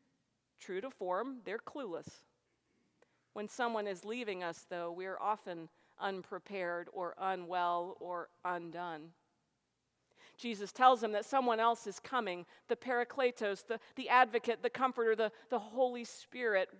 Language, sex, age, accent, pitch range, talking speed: English, female, 50-69, American, 190-255 Hz, 135 wpm